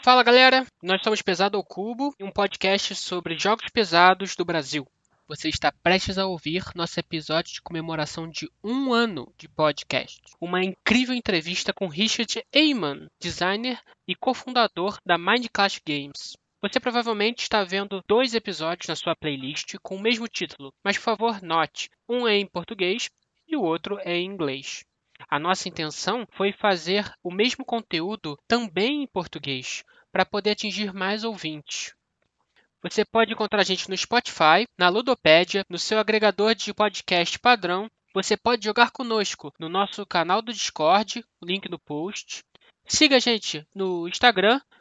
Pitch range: 175-225 Hz